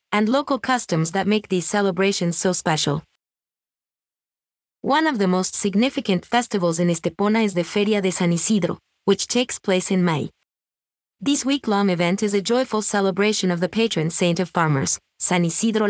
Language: English